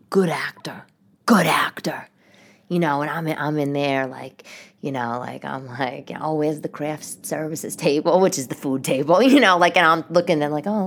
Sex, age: female, 20-39